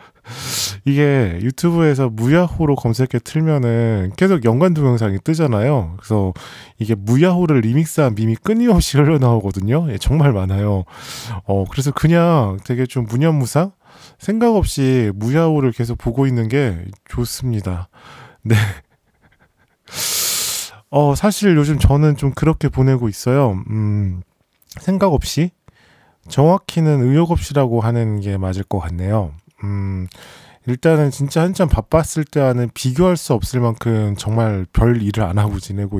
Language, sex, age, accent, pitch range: Korean, male, 20-39, native, 100-145 Hz